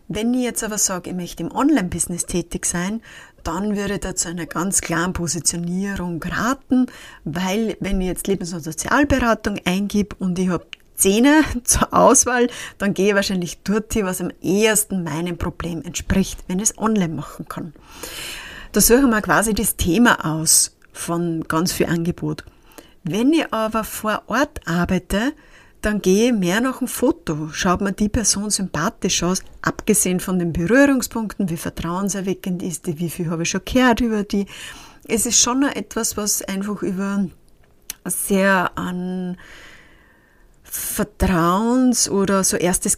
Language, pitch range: German, 175-230 Hz